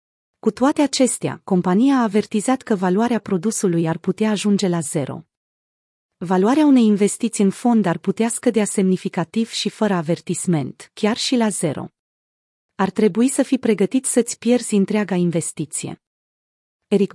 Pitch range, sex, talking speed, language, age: 180-220 Hz, female, 140 wpm, Romanian, 30-49